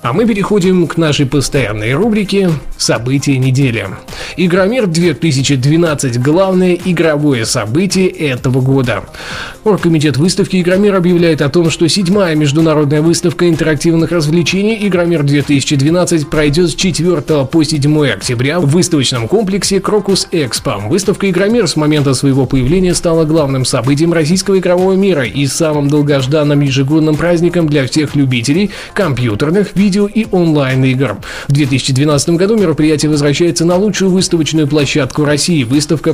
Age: 20-39